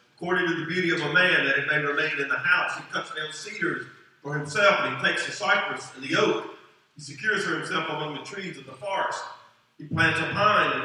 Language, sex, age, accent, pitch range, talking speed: English, male, 40-59, American, 135-190 Hz, 240 wpm